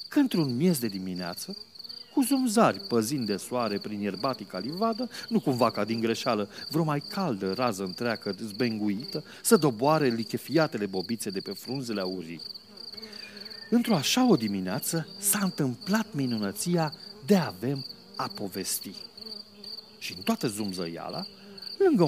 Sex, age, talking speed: male, 40-59, 130 wpm